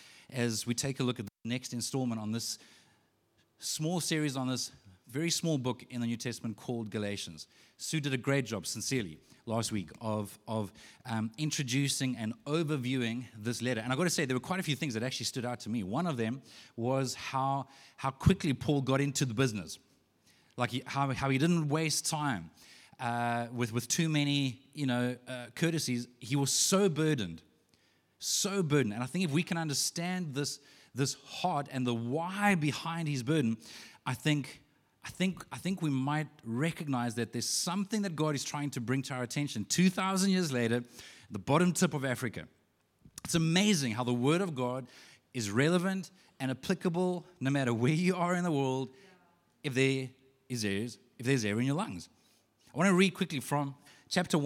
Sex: male